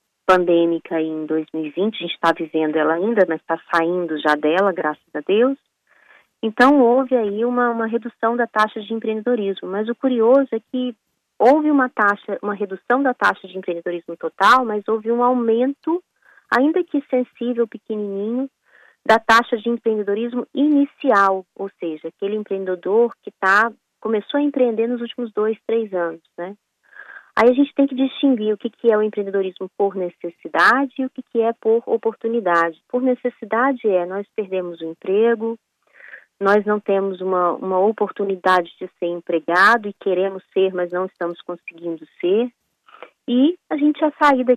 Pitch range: 185-245 Hz